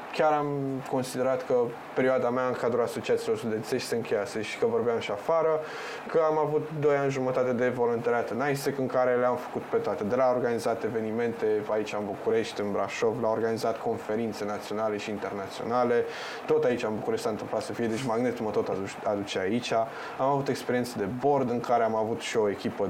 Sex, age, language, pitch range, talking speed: male, 20-39, Romanian, 115-140 Hz, 195 wpm